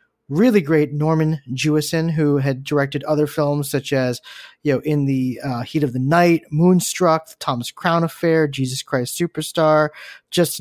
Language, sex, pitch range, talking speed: English, male, 135-160 Hz, 170 wpm